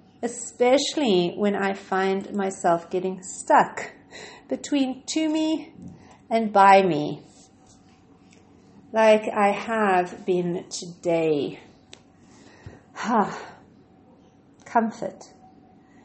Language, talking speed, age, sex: English, 70 wpm, 40-59, female